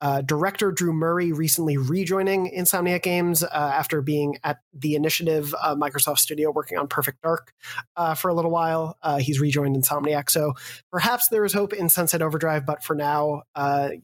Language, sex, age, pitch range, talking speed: English, male, 30-49, 155-180 Hz, 180 wpm